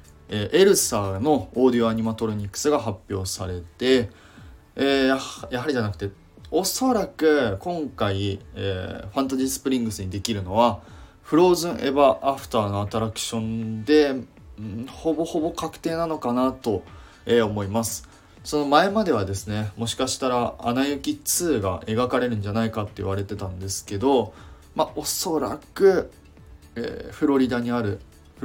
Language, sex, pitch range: Japanese, male, 100-135 Hz